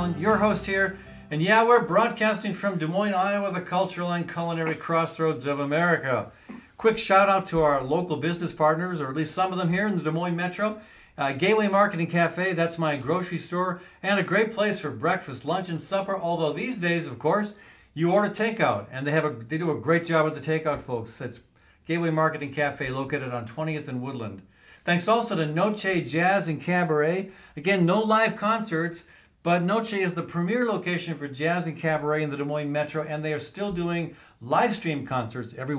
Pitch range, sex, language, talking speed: 155-200 Hz, male, English, 200 wpm